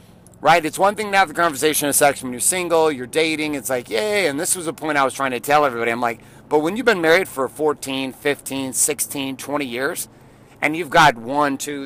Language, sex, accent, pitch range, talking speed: English, male, American, 135-170 Hz, 240 wpm